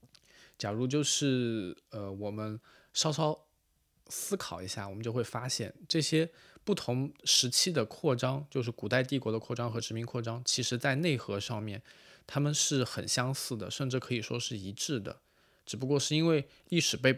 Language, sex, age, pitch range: Chinese, male, 20-39, 105-130 Hz